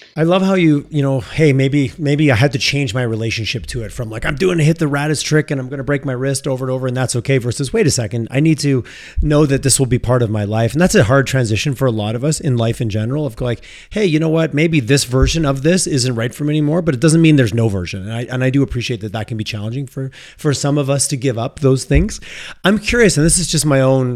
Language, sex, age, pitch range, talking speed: English, male, 30-49, 120-150 Hz, 300 wpm